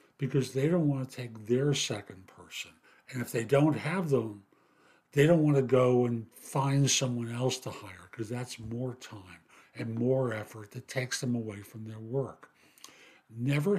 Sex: male